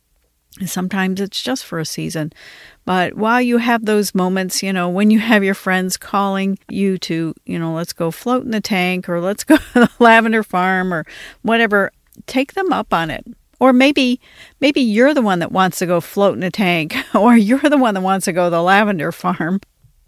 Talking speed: 210 wpm